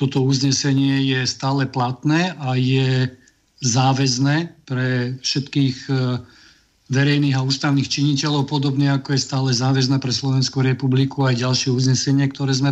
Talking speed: 125 wpm